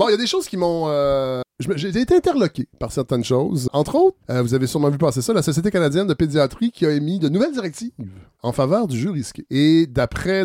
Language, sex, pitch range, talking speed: French, male, 125-180 Hz, 240 wpm